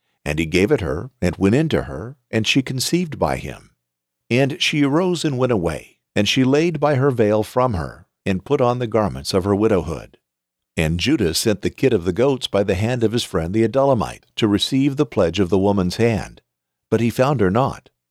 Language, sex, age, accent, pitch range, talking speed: English, male, 50-69, American, 90-130 Hz, 220 wpm